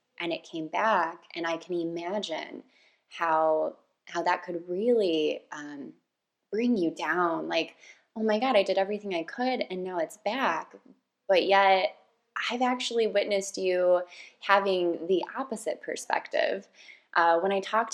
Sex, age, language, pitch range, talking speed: female, 20-39, English, 165-215 Hz, 145 wpm